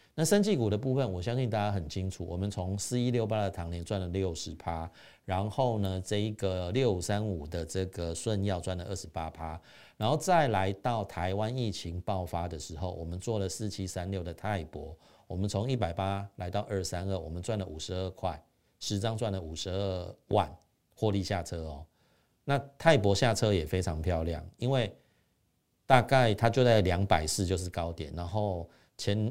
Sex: male